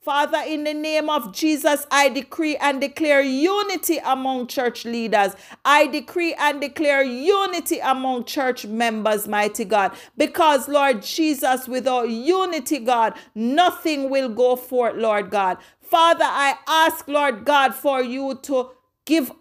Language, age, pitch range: English, 40-59, 245-305 Hz